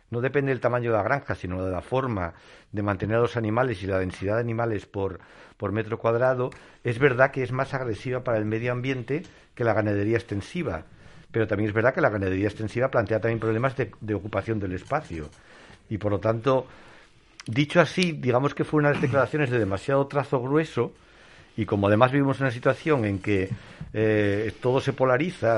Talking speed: 200 wpm